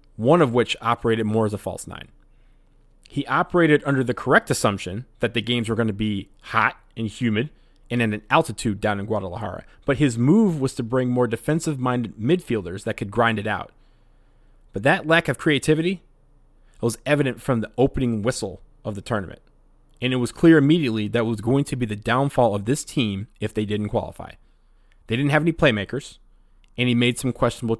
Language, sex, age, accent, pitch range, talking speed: English, male, 30-49, American, 105-130 Hz, 195 wpm